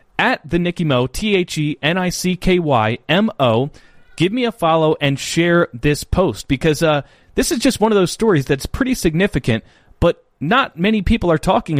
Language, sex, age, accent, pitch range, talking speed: English, male, 30-49, American, 140-205 Hz, 160 wpm